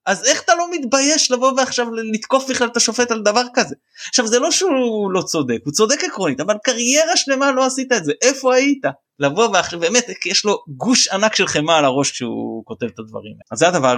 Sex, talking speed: male, 220 wpm